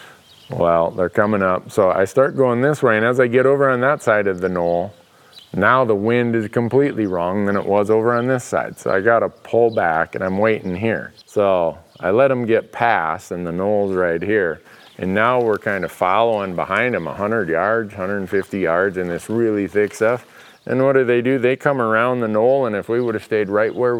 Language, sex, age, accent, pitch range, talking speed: English, male, 40-59, American, 90-120 Hz, 225 wpm